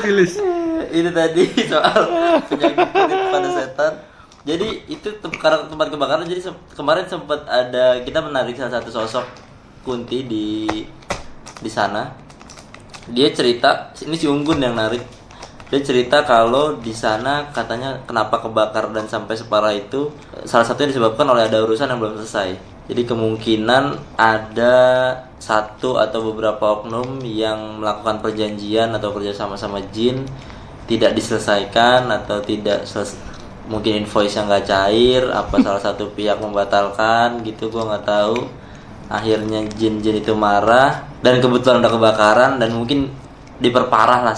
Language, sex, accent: Indonesian, male, native